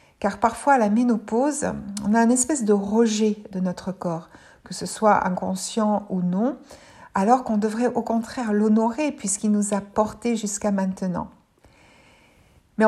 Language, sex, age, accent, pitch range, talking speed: French, female, 60-79, French, 200-240 Hz, 155 wpm